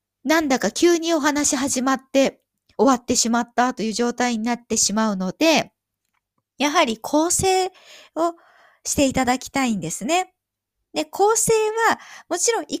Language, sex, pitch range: Japanese, female, 235-350 Hz